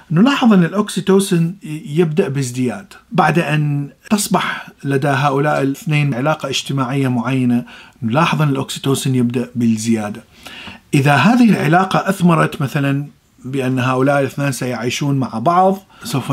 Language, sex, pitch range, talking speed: Arabic, male, 125-175 Hz, 115 wpm